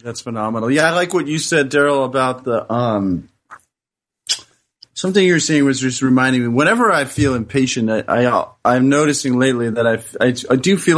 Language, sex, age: English, male, 30-49